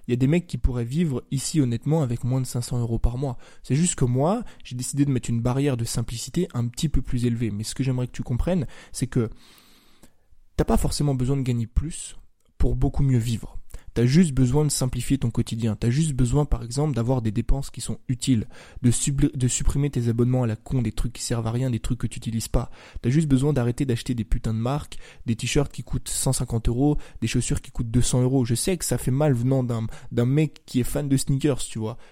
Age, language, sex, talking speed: 20-39, French, male, 245 wpm